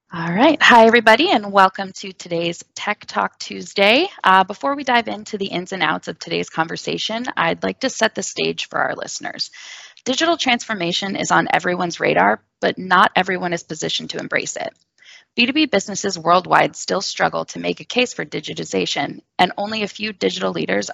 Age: 10-29